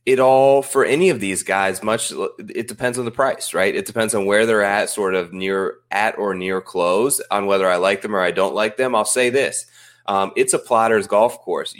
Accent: American